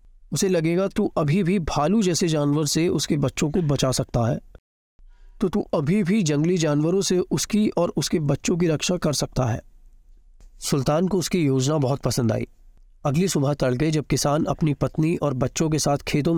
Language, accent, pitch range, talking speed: Hindi, native, 125-160 Hz, 185 wpm